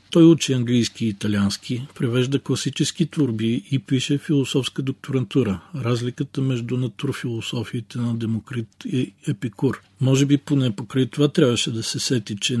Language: Bulgarian